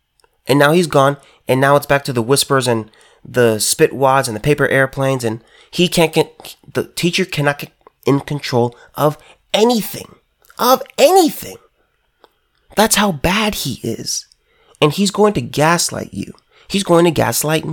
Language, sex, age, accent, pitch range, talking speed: English, male, 30-49, American, 115-170 Hz, 165 wpm